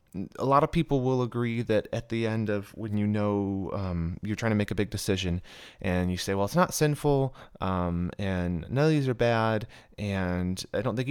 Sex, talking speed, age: male, 210 wpm, 30-49